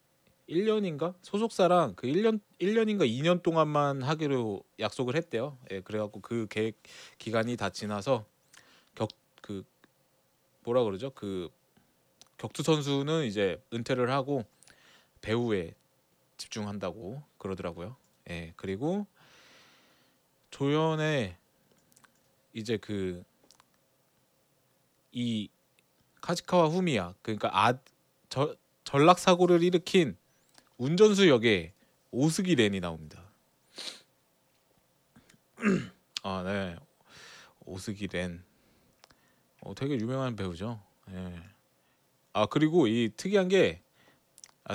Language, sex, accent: Korean, male, native